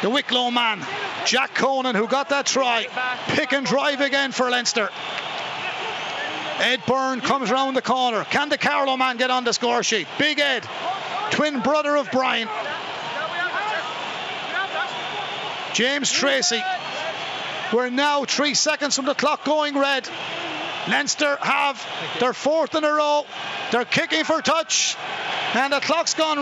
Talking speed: 145 wpm